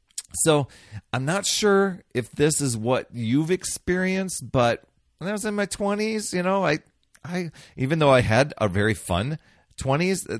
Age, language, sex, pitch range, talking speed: 40-59, English, male, 90-125 Hz, 165 wpm